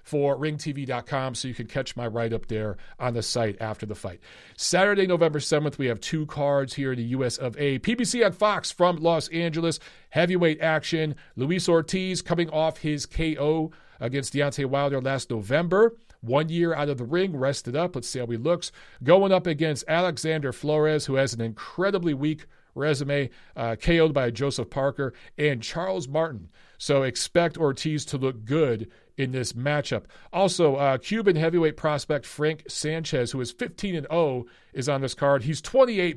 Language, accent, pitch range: English, American, 130-165 Hz